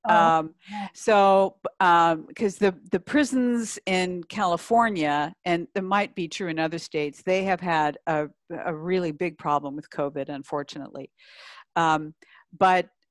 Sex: female